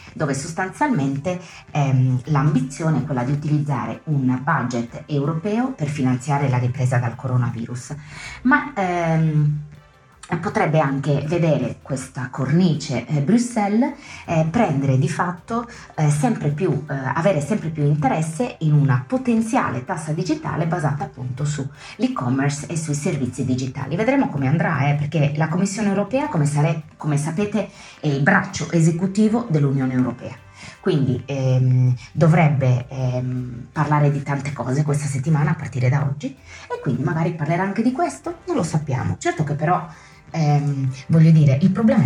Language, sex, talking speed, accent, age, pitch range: Italian, female, 145 wpm, native, 30-49, 135-180 Hz